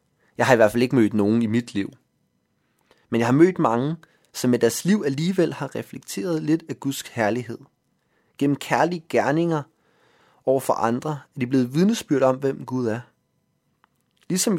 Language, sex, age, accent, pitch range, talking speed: Danish, male, 30-49, native, 115-145 Hz, 175 wpm